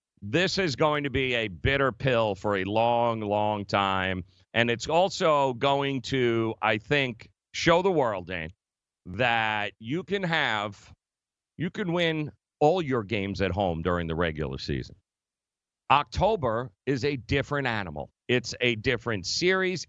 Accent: American